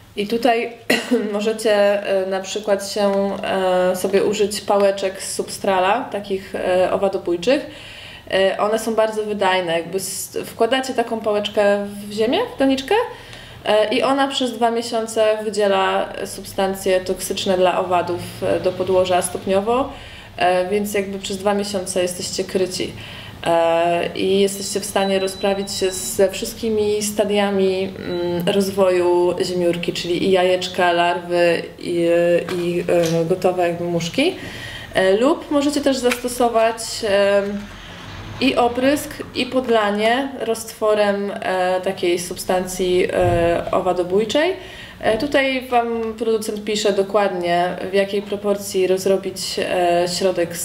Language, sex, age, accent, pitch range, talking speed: Polish, female, 20-39, native, 180-220 Hz, 100 wpm